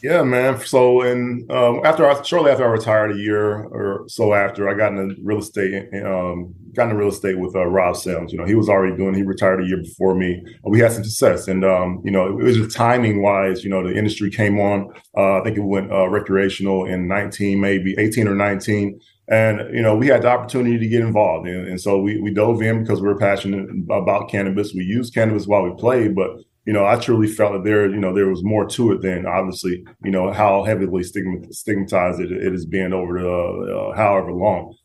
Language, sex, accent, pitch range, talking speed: English, male, American, 95-110 Hz, 235 wpm